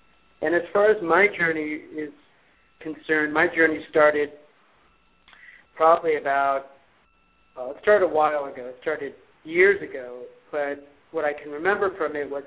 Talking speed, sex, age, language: 150 wpm, male, 40-59, English